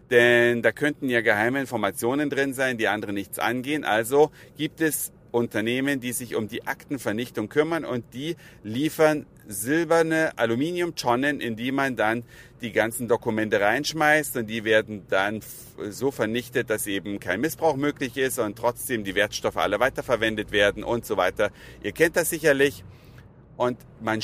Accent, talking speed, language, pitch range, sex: German, 155 wpm, German, 115-145 Hz, male